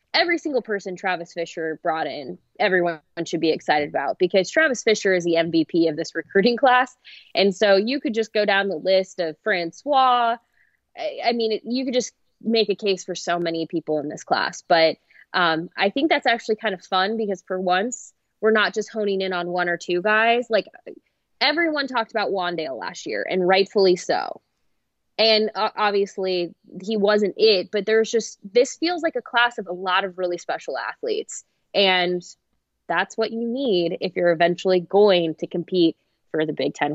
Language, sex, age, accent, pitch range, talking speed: English, female, 20-39, American, 170-220 Hz, 185 wpm